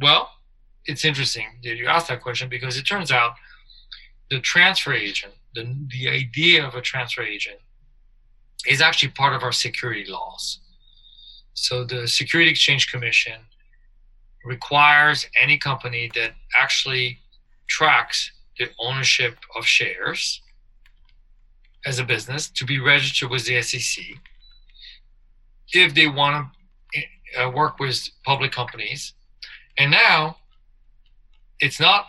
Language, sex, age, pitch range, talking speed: English, male, 40-59, 120-140 Hz, 120 wpm